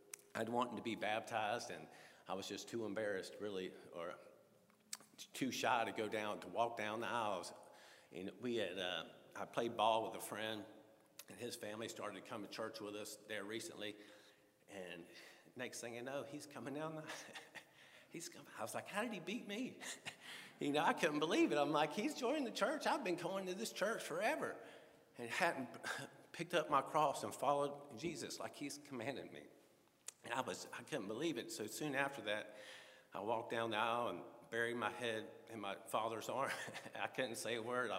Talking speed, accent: 195 wpm, American